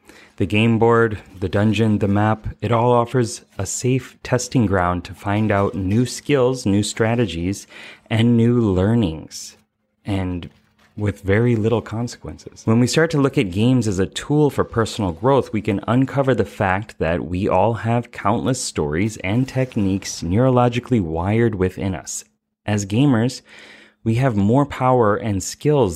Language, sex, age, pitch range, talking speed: English, male, 30-49, 95-120 Hz, 155 wpm